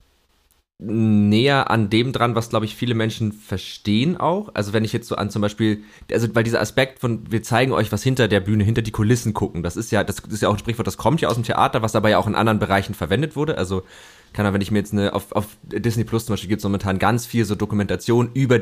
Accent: German